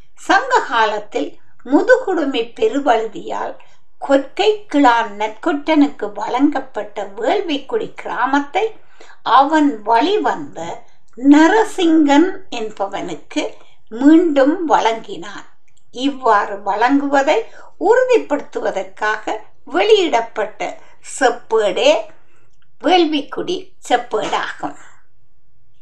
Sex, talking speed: female, 50 wpm